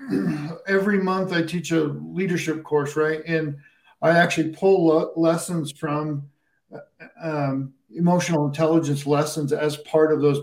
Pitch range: 145-165 Hz